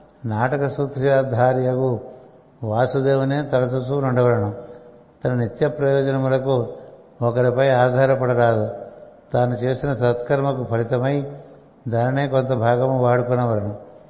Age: 60-79